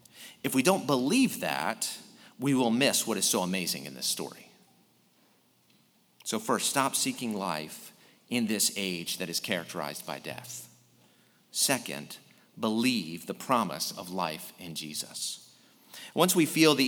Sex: male